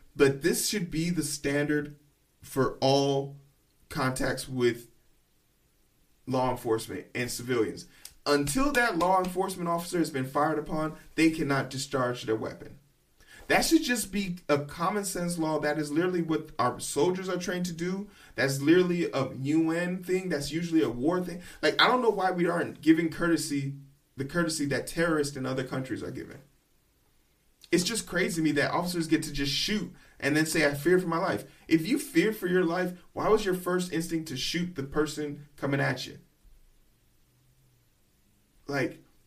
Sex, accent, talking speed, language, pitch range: male, American, 170 wpm, English, 140-180 Hz